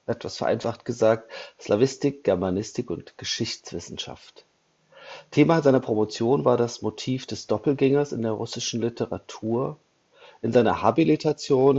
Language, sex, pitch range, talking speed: Slovak, male, 110-135 Hz, 110 wpm